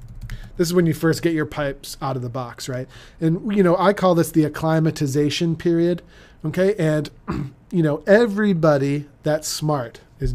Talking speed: 175 wpm